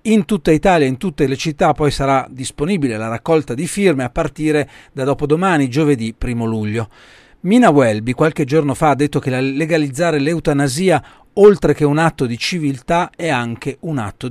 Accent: native